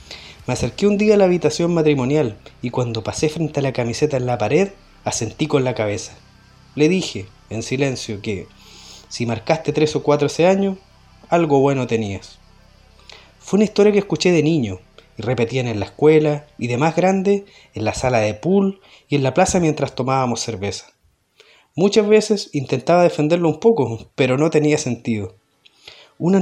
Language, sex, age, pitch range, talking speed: Spanish, male, 30-49, 115-170 Hz, 175 wpm